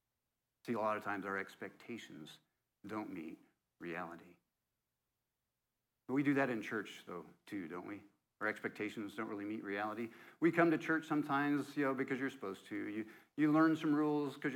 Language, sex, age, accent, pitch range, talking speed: English, male, 50-69, American, 110-135 Hz, 175 wpm